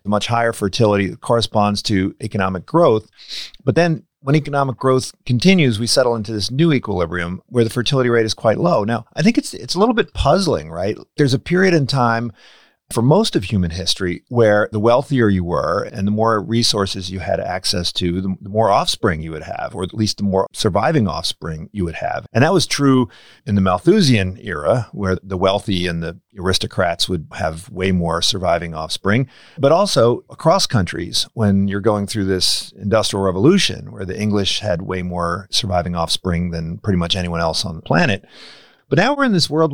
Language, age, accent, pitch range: English, 40-59, American, 95-125 Hz